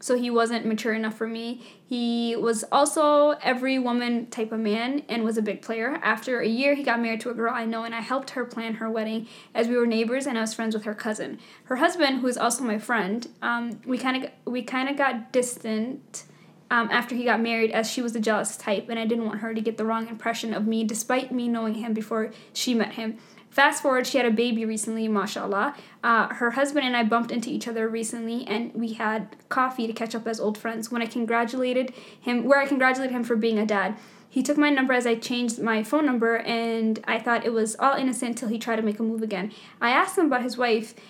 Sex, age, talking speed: female, 10-29, 240 wpm